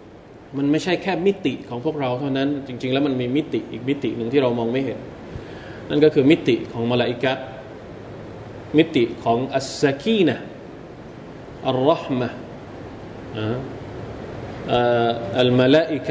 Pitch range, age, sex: 115-145 Hz, 20-39, male